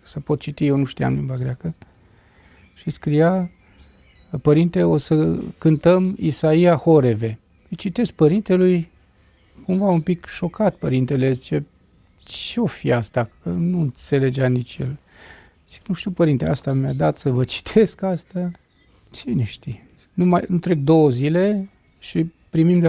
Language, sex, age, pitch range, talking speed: Romanian, male, 40-59, 130-180 Hz, 140 wpm